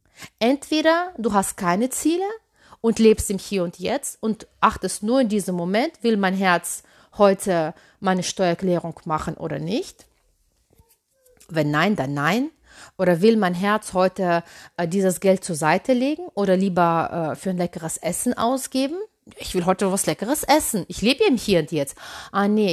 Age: 30-49